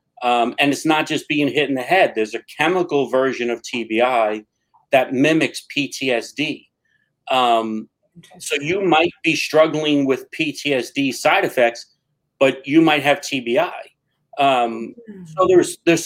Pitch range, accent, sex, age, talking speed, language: 120-155 Hz, American, male, 40-59, 140 wpm, English